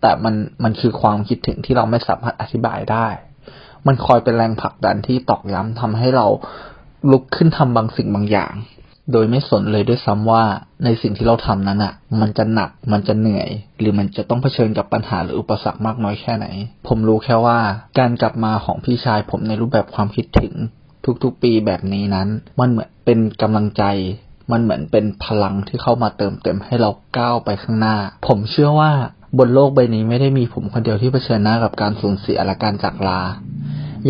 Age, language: 20-39, Thai